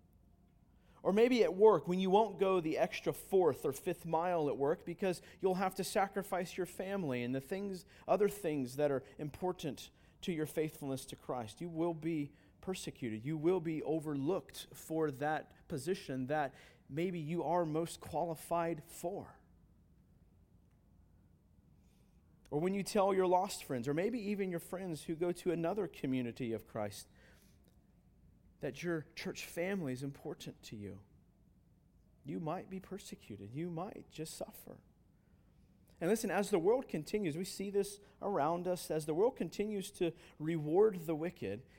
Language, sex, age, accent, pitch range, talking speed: English, male, 40-59, American, 145-195 Hz, 155 wpm